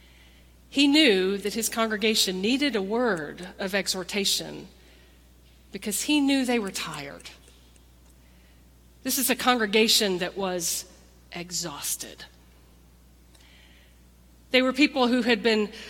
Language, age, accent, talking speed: English, 40-59, American, 110 wpm